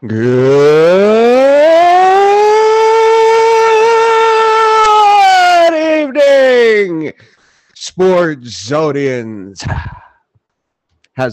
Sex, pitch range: male, 170-235 Hz